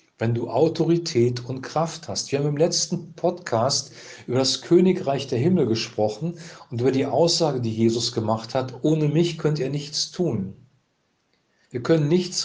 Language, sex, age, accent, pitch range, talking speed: German, male, 40-59, German, 115-155 Hz, 165 wpm